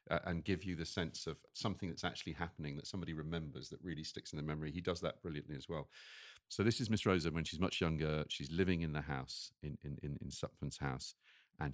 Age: 40-59